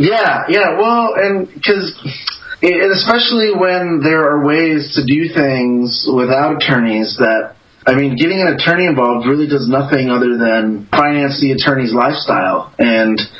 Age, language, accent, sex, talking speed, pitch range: 30-49, English, American, male, 145 wpm, 115-145 Hz